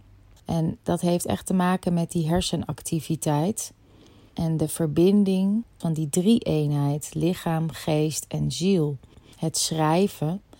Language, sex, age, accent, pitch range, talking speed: Dutch, female, 30-49, Dutch, 150-180 Hz, 125 wpm